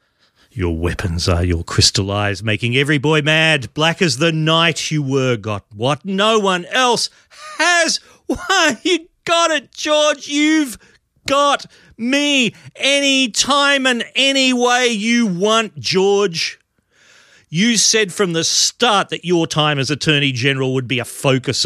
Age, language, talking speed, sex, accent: 40-59, English, 145 wpm, male, Australian